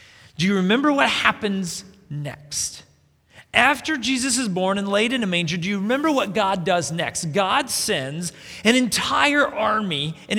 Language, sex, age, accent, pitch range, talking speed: English, male, 40-59, American, 160-235 Hz, 160 wpm